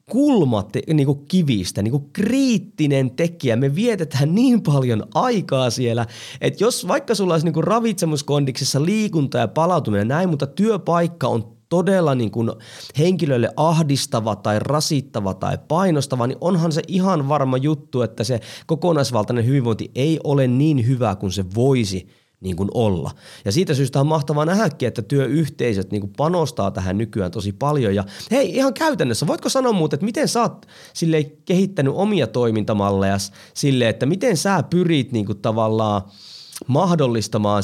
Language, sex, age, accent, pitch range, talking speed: Finnish, male, 20-39, native, 110-165 Hz, 145 wpm